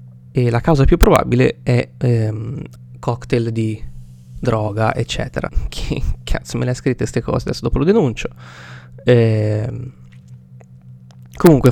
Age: 20-39